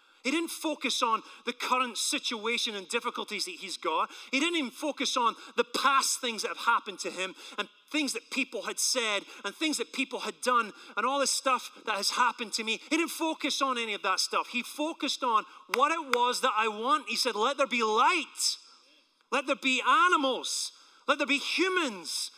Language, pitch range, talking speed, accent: English, 220-275 Hz, 205 wpm, British